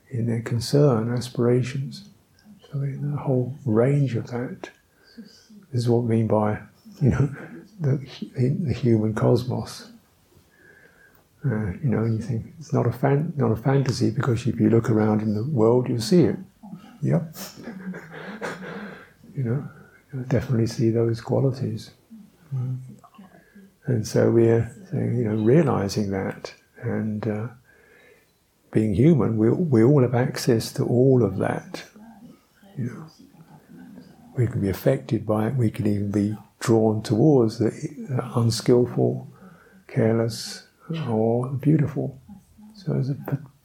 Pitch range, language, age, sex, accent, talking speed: 115-150 Hz, English, 60-79, male, British, 130 wpm